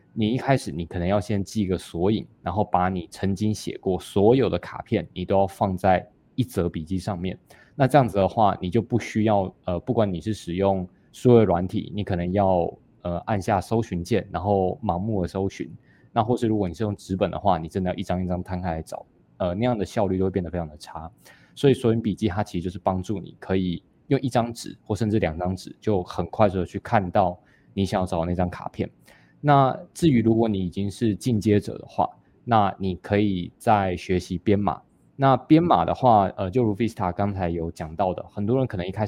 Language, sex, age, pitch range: Chinese, male, 20-39, 90-110 Hz